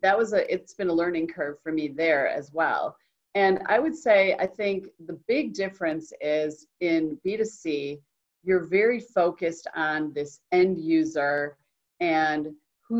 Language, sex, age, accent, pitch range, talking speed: English, female, 40-59, American, 155-195 Hz, 155 wpm